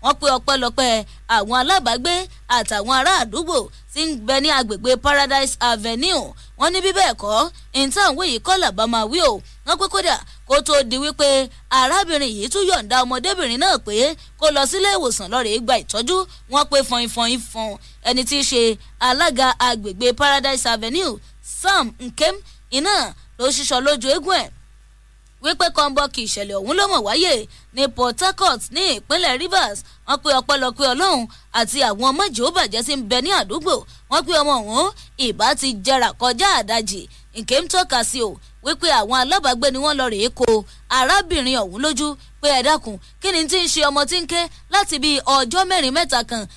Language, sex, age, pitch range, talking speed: English, female, 20-39, 245-335 Hz, 170 wpm